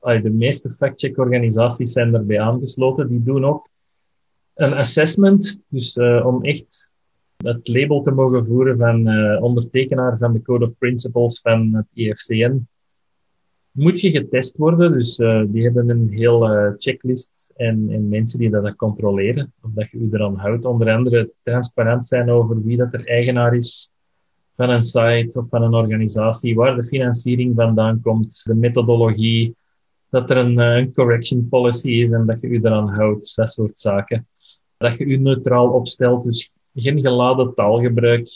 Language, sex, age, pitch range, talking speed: Dutch, male, 30-49, 110-130 Hz, 165 wpm